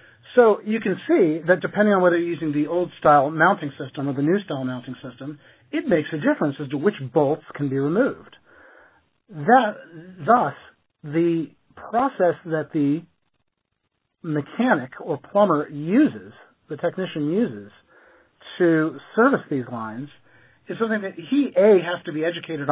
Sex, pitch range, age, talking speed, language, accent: male, 140-180 Hz, 40-59, 155 wpm, English, American